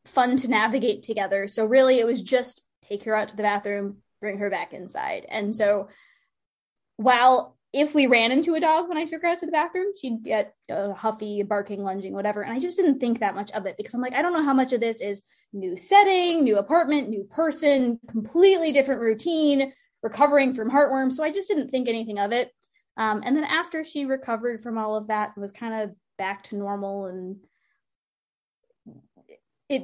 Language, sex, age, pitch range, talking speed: English, female, 20-39, 215-295 Hz, 205 wpm